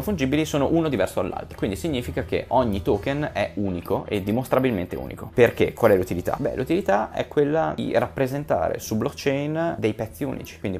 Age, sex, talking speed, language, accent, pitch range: 20-39, male, 170 wpm, Italian, native, 90-135 Hz